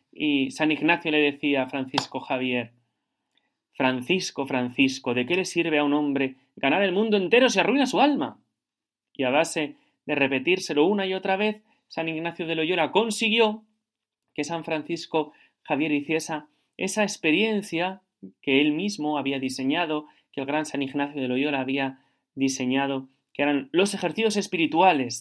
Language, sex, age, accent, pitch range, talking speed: Spanish, male, 30-49, Spanish, 135-170 Hz, 155 wpm